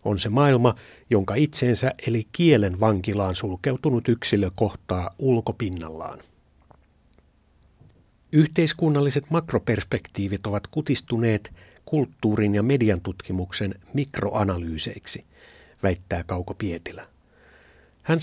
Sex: male